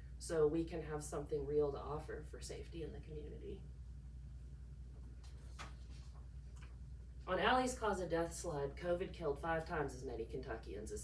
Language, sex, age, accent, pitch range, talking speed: English, female, 40-59, American, 130-155 Hz, 145 wpm